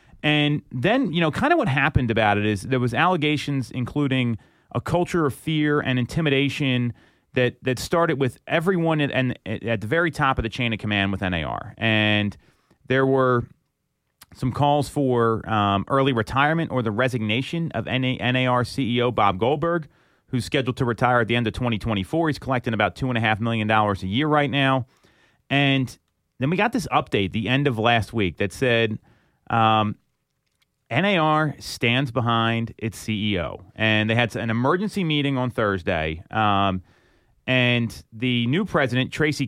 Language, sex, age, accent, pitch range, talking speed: English, male, 30-49, American, 110-140 Hz, 160 wpm